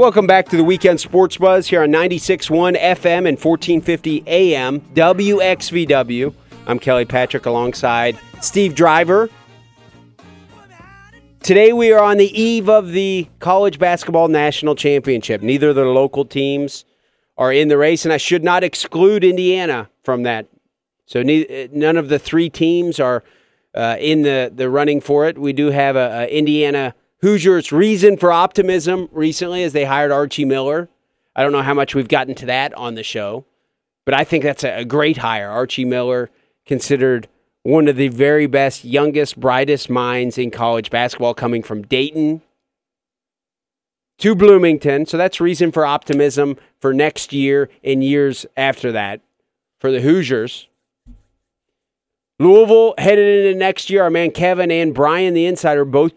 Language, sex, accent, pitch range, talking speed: English, male, American, 130-175 Hz, 155 wpm